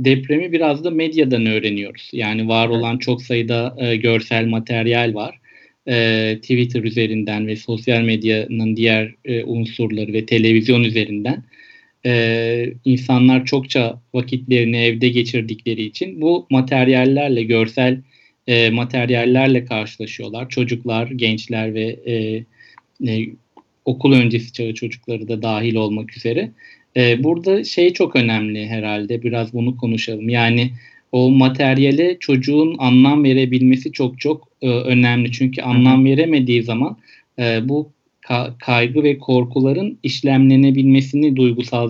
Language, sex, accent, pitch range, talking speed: Turkish, male, native, 115-130 Hz, 110 wpm